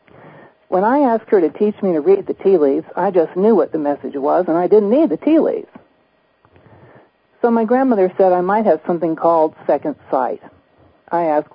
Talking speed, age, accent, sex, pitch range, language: 205 wpm, 50-69, American, male, 165-215 Hz, English